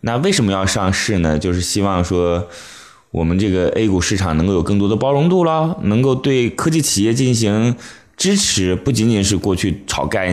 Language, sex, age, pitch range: Chinese, male, 20-39, 90-140 Hz